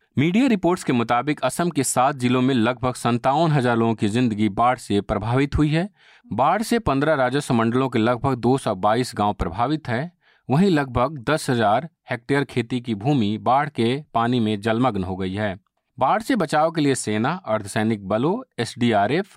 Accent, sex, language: native, male, Hindi